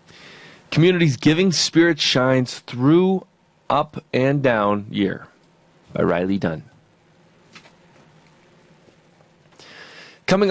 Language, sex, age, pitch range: English, male, 30-49, 110-165 Hz